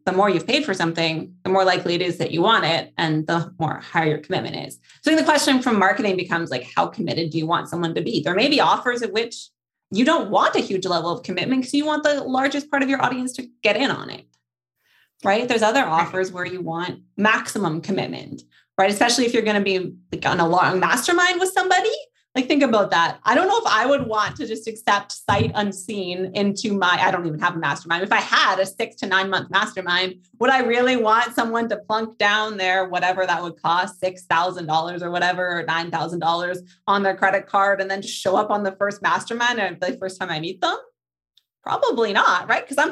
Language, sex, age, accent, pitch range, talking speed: English, female, 20-39, American, 175-230 Hz, 230 wpm